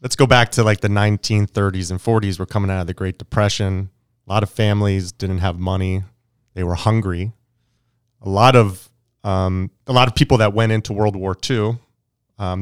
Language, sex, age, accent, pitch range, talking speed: English, male, 30-49, American, 100-120 Hz, 195 wpm